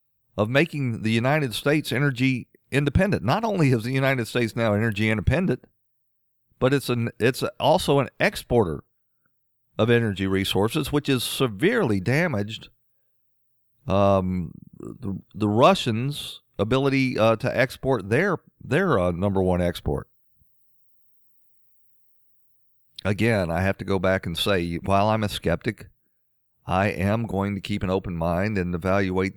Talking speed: 135 wpm